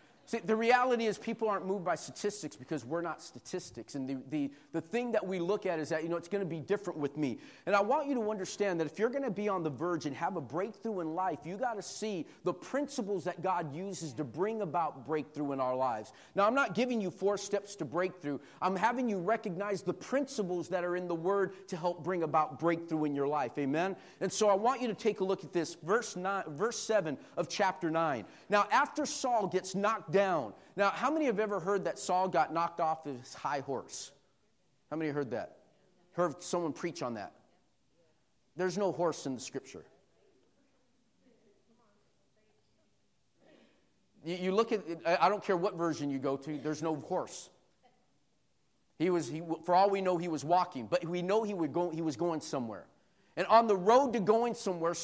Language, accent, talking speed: English, American, 205 wpm